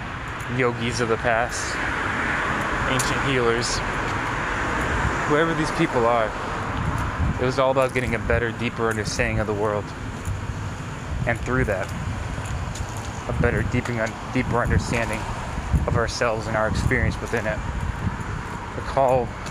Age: 20-39